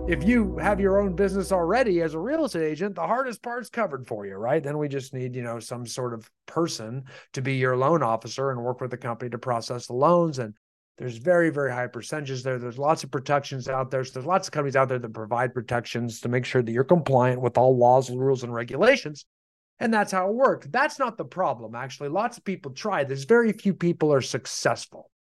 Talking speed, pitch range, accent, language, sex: 235 wpm, 125-170 Hz, American, English, male